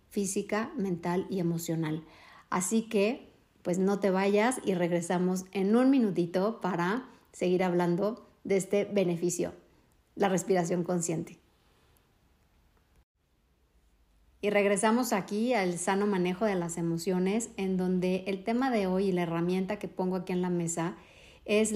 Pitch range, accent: 180-215 Hz, Mexican